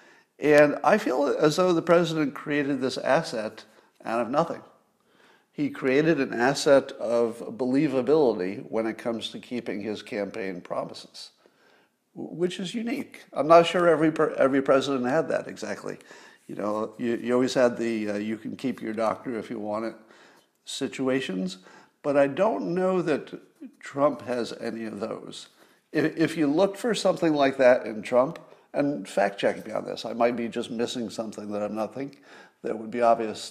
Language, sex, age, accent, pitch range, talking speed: English, male, 50-69, American, 115-160 Hz, 160 wpm